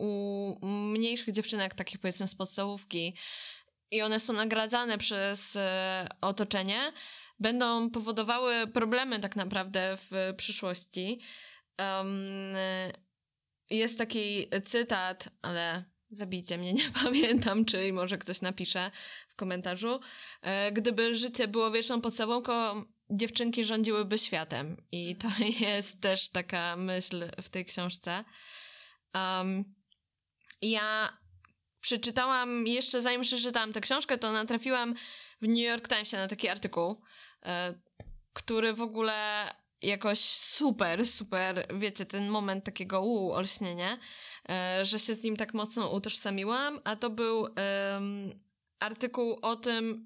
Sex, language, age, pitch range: female, Polish, 20-39, 190-230 Hz